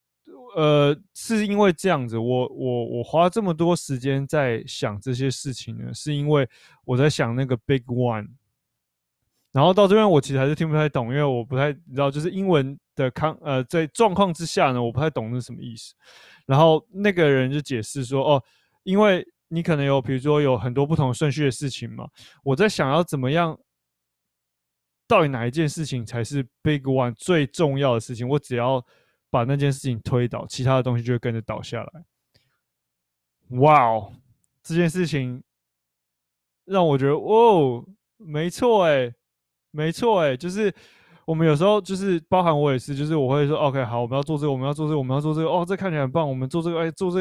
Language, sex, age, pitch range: Chinese, male, 20-39, 125-160 Hz